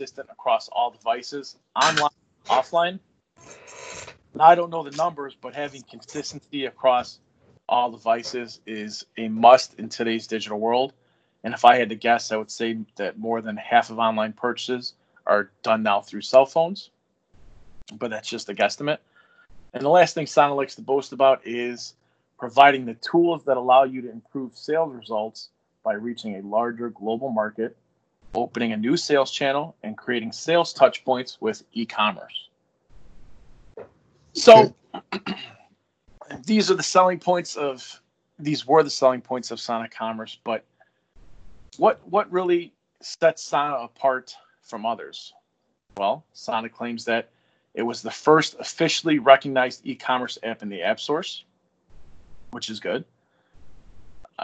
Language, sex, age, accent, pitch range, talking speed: English, male, 40-59, American, 115-150 Hz, 145 wpm